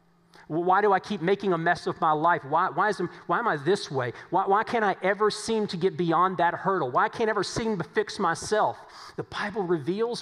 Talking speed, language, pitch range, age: 235 wpm, English, 150-190 Hz, 40-59